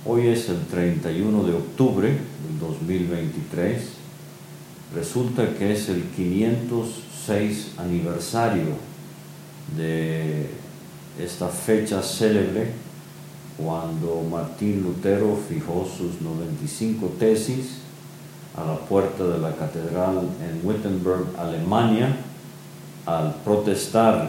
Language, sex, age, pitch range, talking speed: Spanish, male, 50-69, 85-105 Hz, 90 wpm